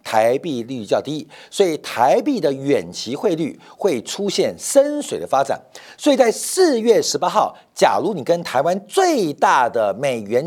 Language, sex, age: Chinese, male, 50-69